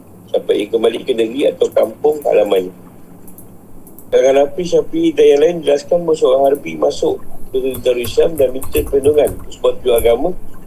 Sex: male